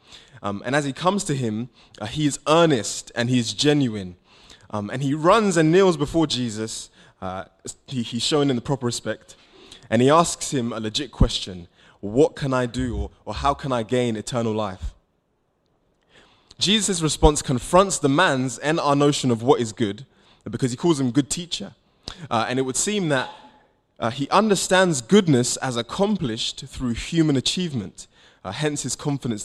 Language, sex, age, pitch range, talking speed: English, male, 20-39, 115-150 Hz, 175 wpm